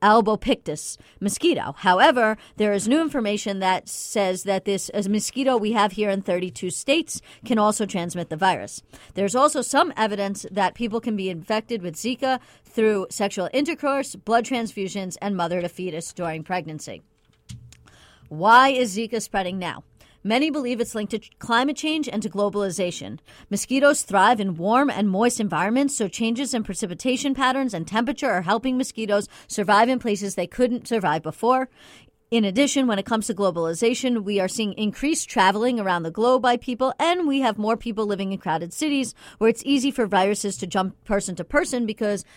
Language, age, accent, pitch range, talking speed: English, 40-59, American, 195-250 Hz, 170 wpm